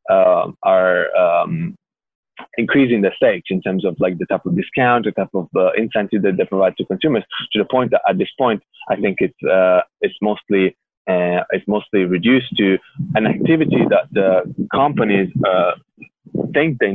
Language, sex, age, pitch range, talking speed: English, male, 20-39, 95-115 Hz, 175 wpm